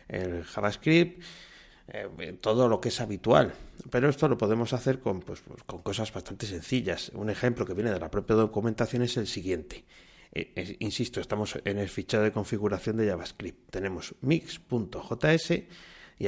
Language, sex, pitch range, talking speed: Spanish, male, 105-125 Hz, 160 wpm